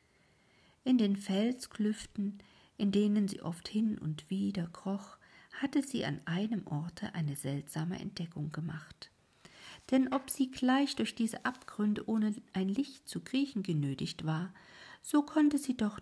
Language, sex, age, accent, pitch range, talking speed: German, female, 50-69, German, 170-215 Hz, 140 wpm